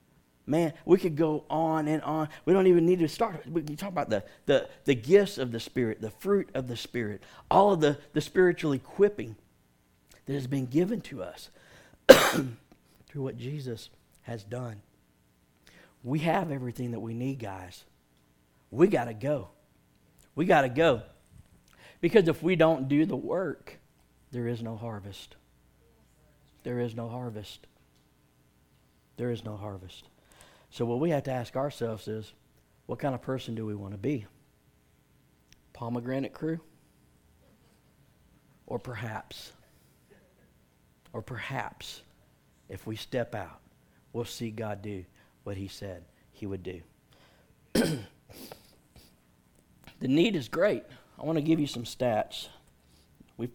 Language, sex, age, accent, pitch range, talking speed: English, male, 60-79, American, 95-145 Hz, 140 wpm